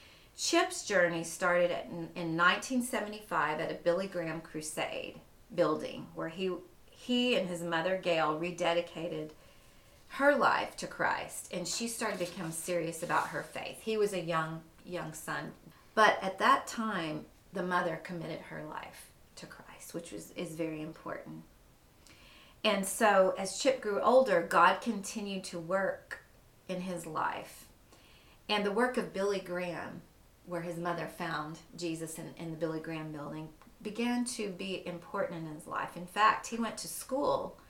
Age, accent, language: 40-59, American, English